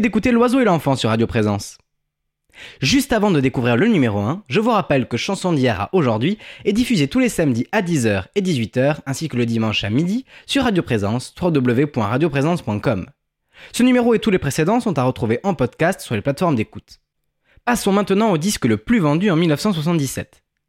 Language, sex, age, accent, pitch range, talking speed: French, male, 20-39, French, 125-205 Hz, 190 wpm